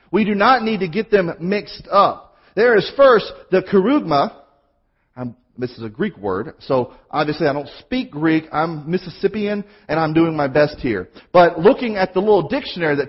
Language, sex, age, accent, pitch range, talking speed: English, male, 40-59, American, 165-235 Hz, 185 wpm